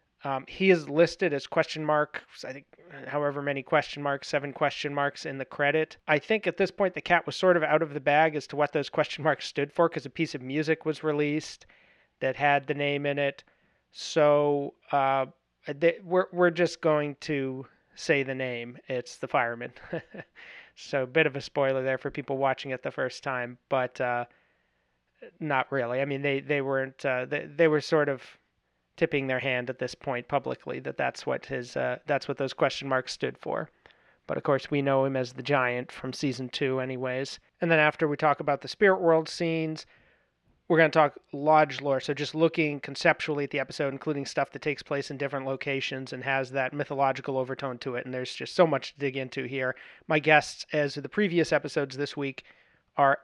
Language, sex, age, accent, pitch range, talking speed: English, male, 30-49, American, 135-155 Hz, 205 wpm